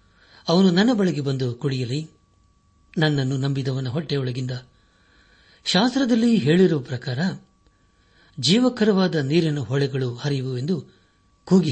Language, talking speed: Kannada, 80 wpm